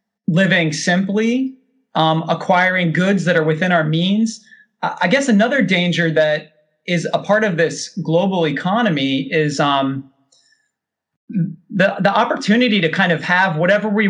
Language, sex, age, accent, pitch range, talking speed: English, male, 30-49, American, 155-210 Hz, 140 wpm